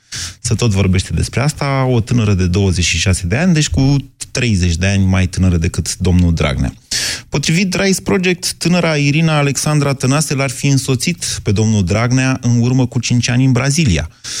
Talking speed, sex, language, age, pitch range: 170 wpm, male, Romanian, 30-49, 100-130 Hz